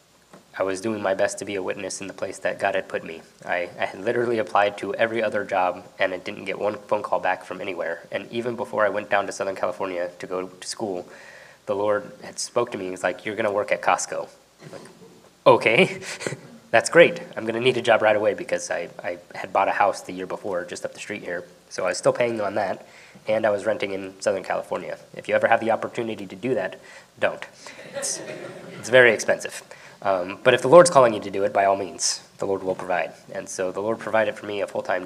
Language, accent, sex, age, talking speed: English, American, male, 20-39, 245 wpm